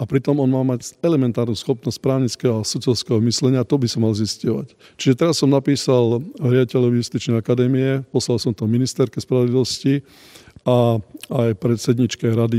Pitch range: 120-130 Hz